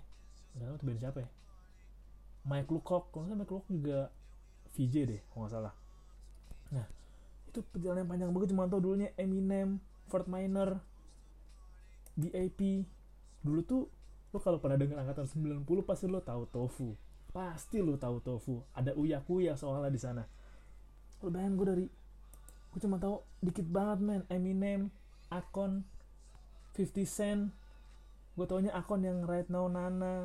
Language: Indonesian